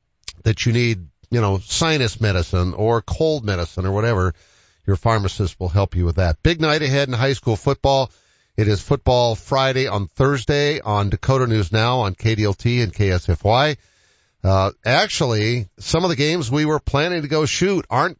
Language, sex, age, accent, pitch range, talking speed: English, male, 50-69, American, 105-140 Hz, 175 wpm